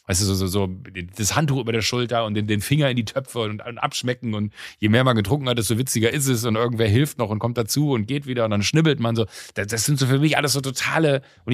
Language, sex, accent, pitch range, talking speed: German, male, German, 95-125 Hz, 285 wpm